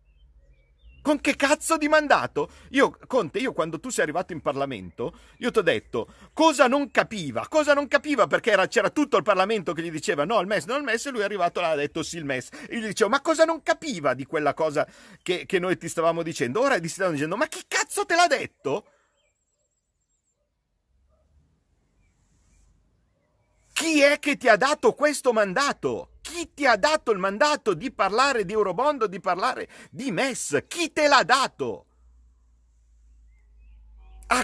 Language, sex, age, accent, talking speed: Italian, male, 50-69, native, 180 wpm